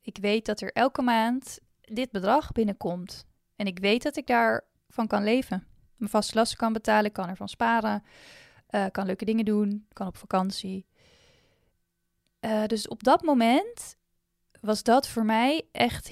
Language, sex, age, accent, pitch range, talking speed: Dutch, female, 20-39, Dutch, 205-250 Hz, 160 wpm